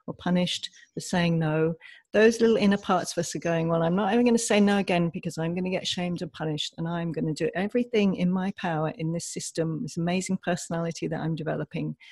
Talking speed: 225 wpm